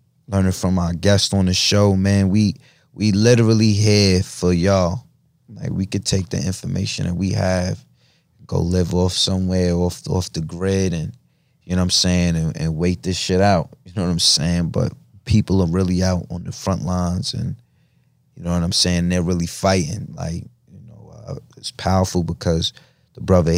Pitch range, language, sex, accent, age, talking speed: 85-100 Hz, English, male, American, 20-39, 195 wpm